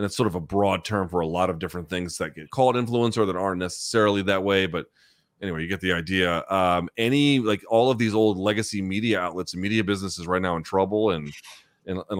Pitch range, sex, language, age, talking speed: 90-115 Hz, male, English, 30-49, 230 wpm